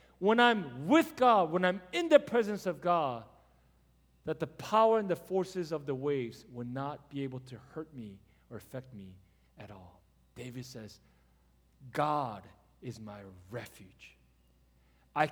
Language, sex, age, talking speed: English, male, 40-59, 155 wpm